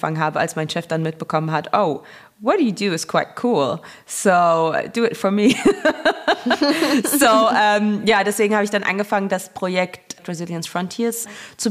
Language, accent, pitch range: German, German, 160-195 Hz